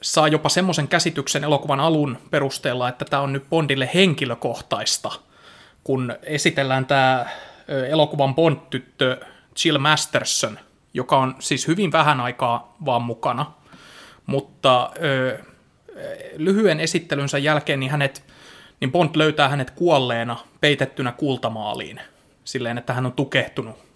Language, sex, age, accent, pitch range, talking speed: Finnish, male, 20-39, native, 130-150 Hz, 110 wpm